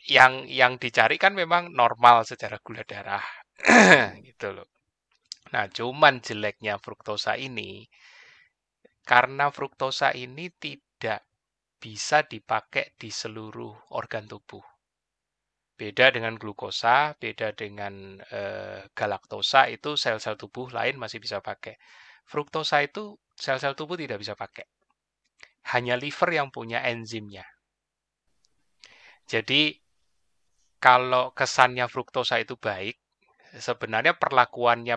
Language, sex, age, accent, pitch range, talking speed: Indonesian, male, 20-39, native, 105-135 Hz, 105 wpm